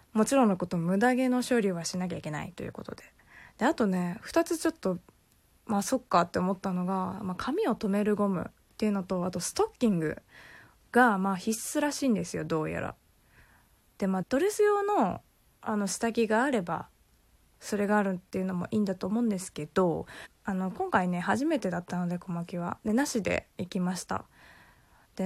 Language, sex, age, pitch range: Japanese, female, 20-39, 180-255 Hz